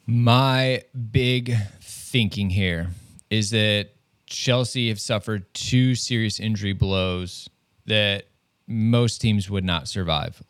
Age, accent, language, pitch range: 20-39, American, English, 100-120 Hz